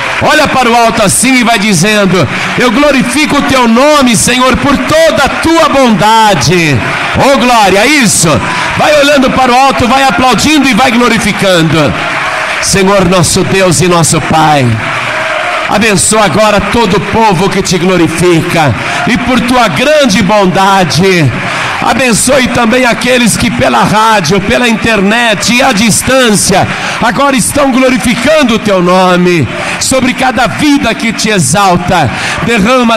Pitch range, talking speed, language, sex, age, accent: 185-250 Hz, 135 wpm, Portuguese, male, 60-79, Brazilian